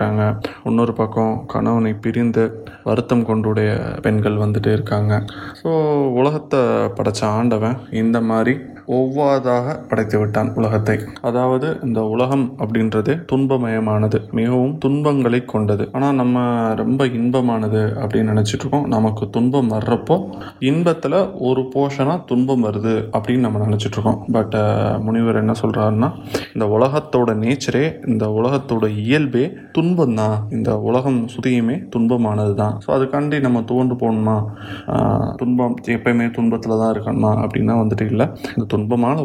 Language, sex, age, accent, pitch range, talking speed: Tamil, male, 20-39, native, 110-130 Hz, 70 wpm